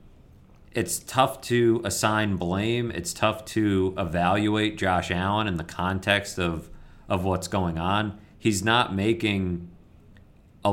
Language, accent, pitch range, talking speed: English, American, 90-105 Hz, 130 wpm